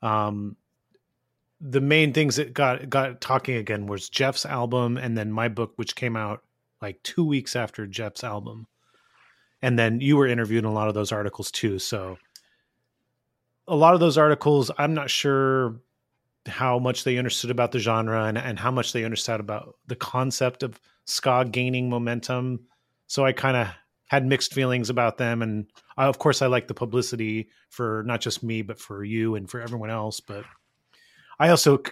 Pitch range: 115-135 Hz